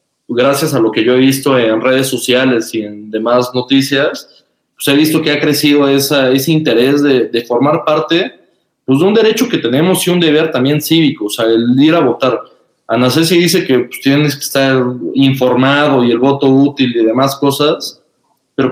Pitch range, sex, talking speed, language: 125-155 Hz, male, 190 wpm, Spanish